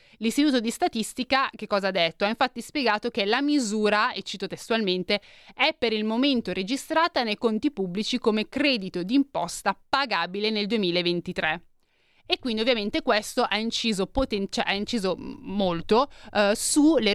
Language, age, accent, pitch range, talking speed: Italian, 30-49, native, 190-240 Hz, 150 wpm